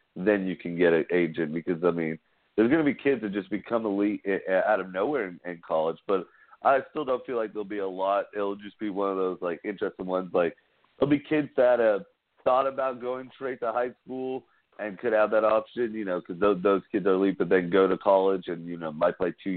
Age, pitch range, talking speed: 40-59, 85-105 Hz, 245 wpm